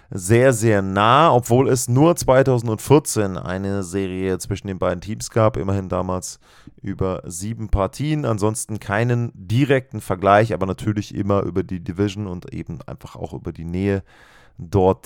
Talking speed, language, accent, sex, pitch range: 145 wpm, German, German, male, 100-125 Hz